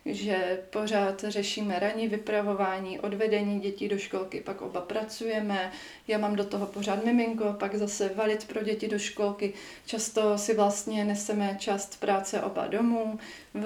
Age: 30-49